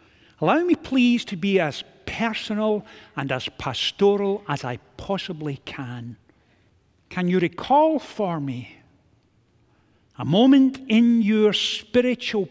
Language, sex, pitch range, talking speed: English, male, 190-260 Hz, 115 wpm